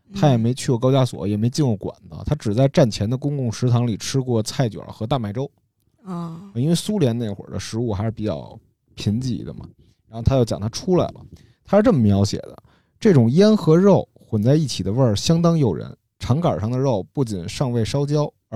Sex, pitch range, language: male, 110-145 Hz, Chinese